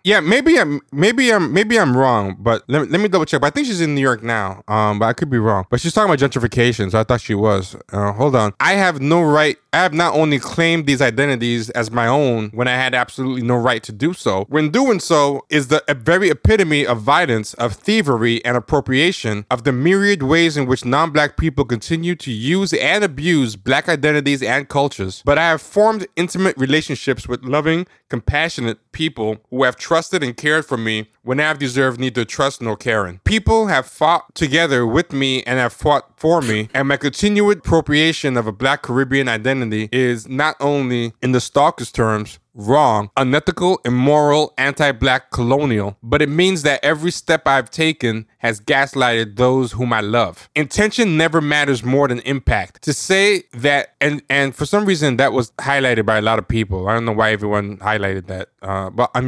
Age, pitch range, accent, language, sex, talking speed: 20-39, 115-155 Hz, American, English, male, 200 wpm